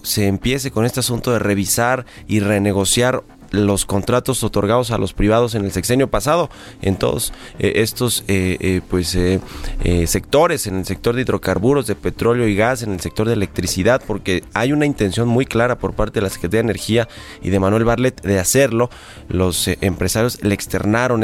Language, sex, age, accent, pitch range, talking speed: Spanish, male, 30-49, Mexican, 95-120 Hz, 185 wpm